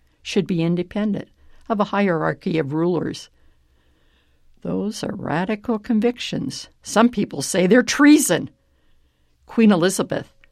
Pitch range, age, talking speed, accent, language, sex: 160-225 Hz, 60-79, 110 wpm, American, English, female